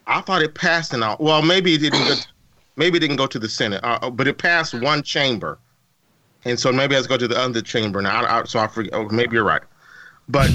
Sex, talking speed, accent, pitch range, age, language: male, 245 wpm, American, 125-165 Hz, 30-49, English